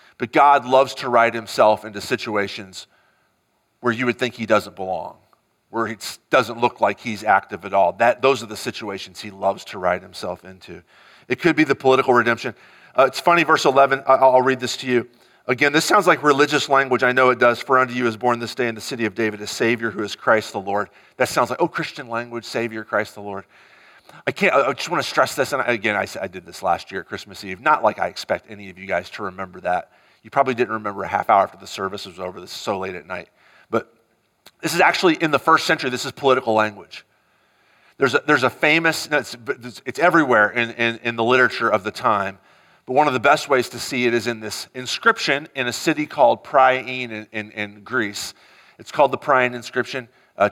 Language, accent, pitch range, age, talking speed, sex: English, American, 110-130 Hz, 40-59, 230 wpm, male